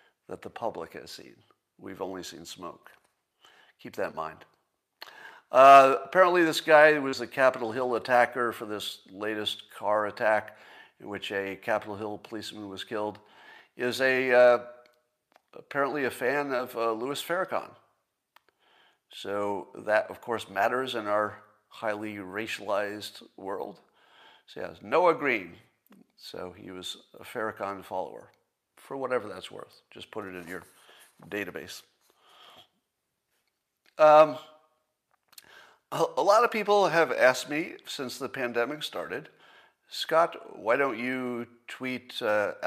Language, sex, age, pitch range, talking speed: English, male, 50-69, 105-135 Hz, 135 wpm